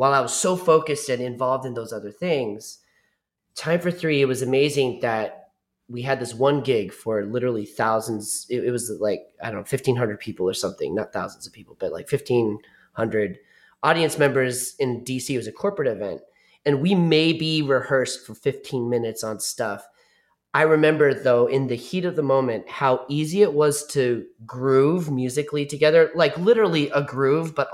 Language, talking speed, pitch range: English, 180 wpm, 120-150 Hz